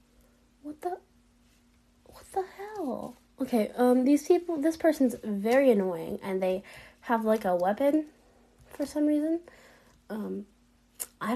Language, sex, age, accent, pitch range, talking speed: English, female, 10-29, American, 210-305 Hz, 125 wpm